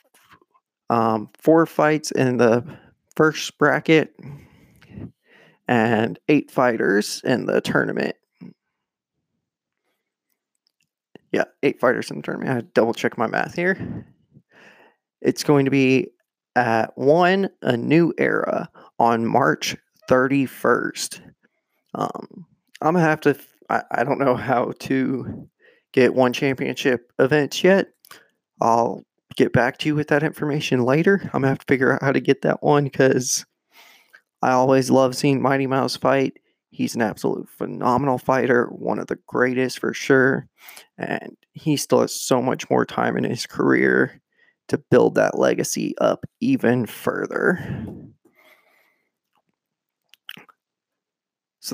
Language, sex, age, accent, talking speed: English, male, 20-39, American, 130 wpm